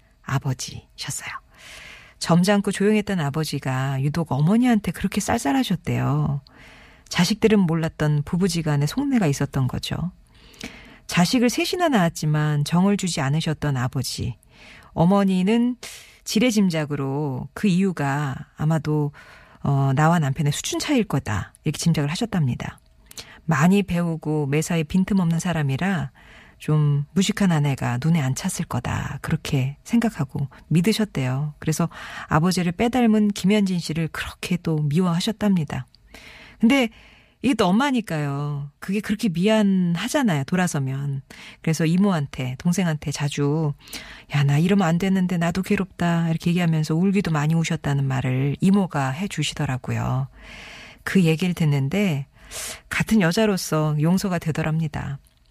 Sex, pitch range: female, 145-195 Hz